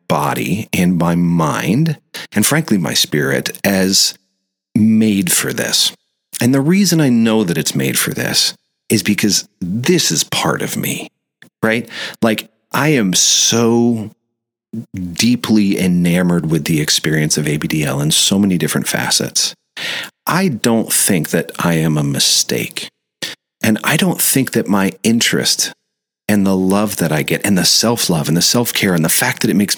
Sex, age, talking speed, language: male, 40-59, 160 wpm, English